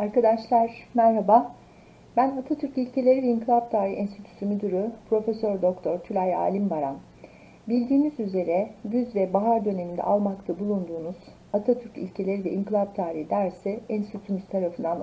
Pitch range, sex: 180-235 Hz, female